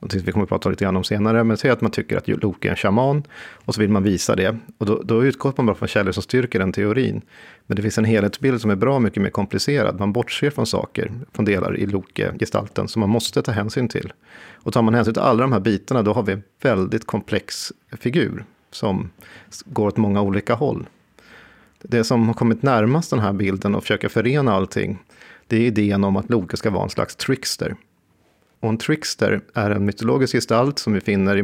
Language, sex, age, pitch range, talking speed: Swedish, male, 40-59, 100-120 Hz, 220 wpm